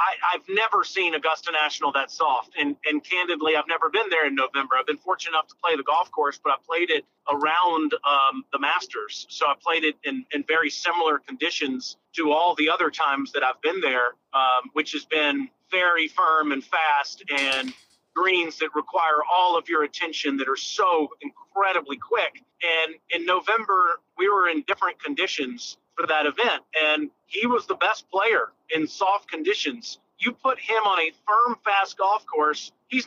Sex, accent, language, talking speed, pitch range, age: male, American, English, 185 wpm, 150-240 Hz, 40-59